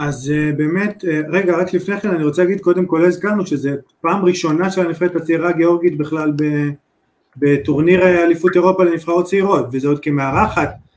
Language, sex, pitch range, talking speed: Hebrew, male, 150-185 Hz, 155 wpm